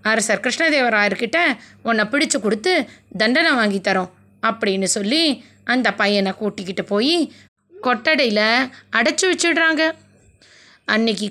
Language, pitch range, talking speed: Tamil, 210-295 Hz, 90 wpm